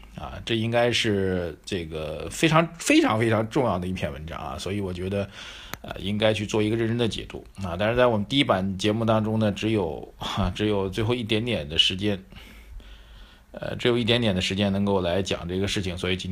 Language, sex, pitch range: Chinese, male, 95-110 Hz